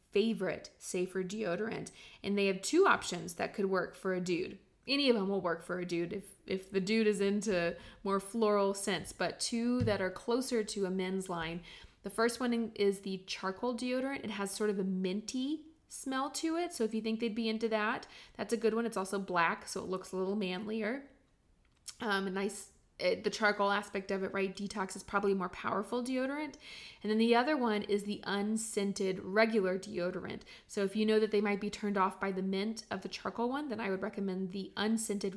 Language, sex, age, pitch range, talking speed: English, female, 20-39, 195-265 Hz, 210 wpm